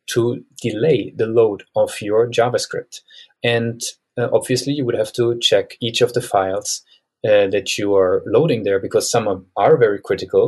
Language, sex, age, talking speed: English, male, 30-49, 180 wpm